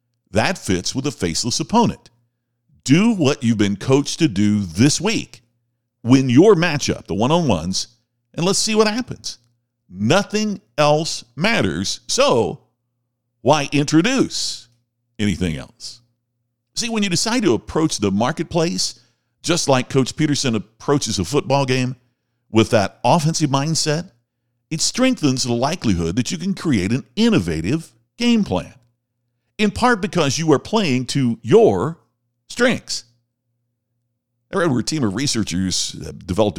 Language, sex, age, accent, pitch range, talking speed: English, male, 50-69, American, 115-160 Hz, 135 wpm